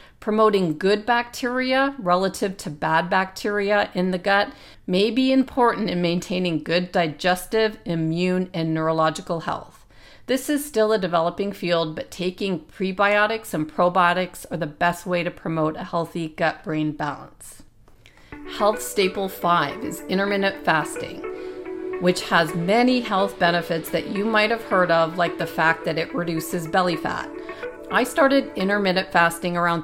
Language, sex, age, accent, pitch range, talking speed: English, female, 40-59, American, 165-200 Hz, 145 wpm